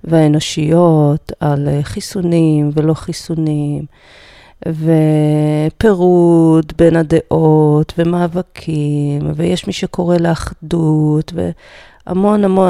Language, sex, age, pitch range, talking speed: Hebrew, female, 40-59, 155-195 Hz, 70 wpm